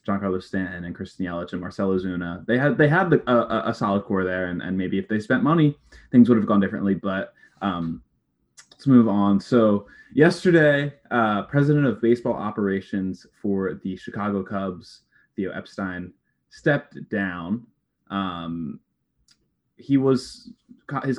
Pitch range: 95-120 Hz